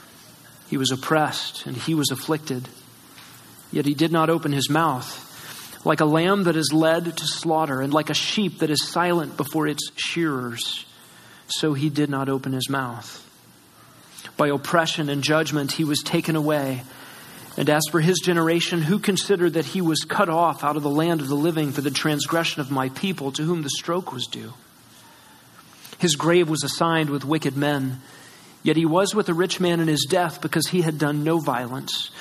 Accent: American